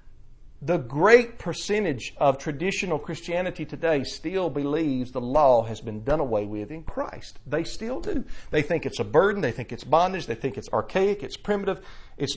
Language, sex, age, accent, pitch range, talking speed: English, male, 40-59, American, 120-185 Hz, 180 wpm